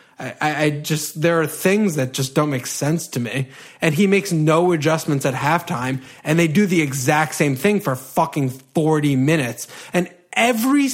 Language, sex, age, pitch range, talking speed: English, male, 30-49, 140-180 Hz, 180 wpm